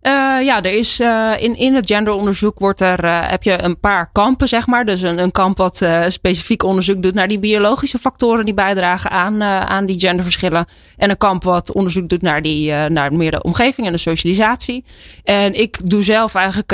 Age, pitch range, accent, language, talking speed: 20-39, 180-215 Hz, Dutch, Dutch, 200 wpm